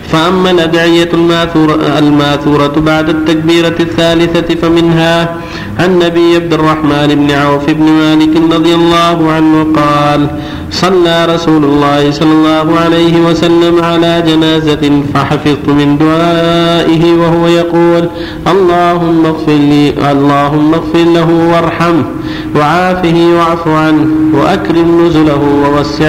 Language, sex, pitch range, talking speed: Arabic, male, 150-170 Hz, 105 wpm